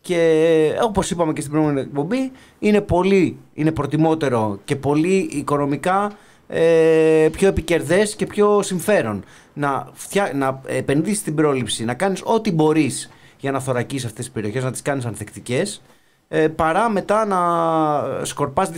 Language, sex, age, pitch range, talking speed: Greek, male, 30-49, 115-160 Hz, 135 wpm